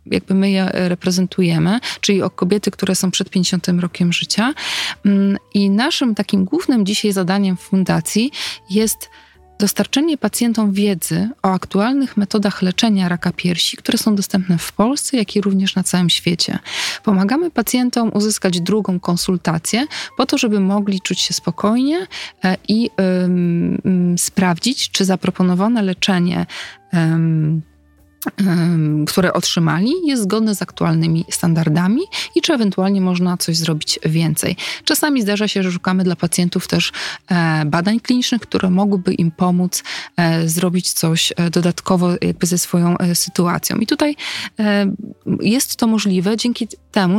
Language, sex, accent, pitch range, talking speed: Polish, female, native, 180-220 Hz, 130 wpm